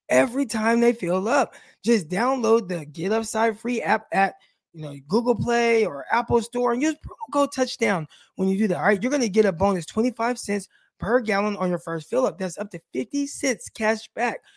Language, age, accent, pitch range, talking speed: English, 20-39, American, 185-250 Hz, 215 wpm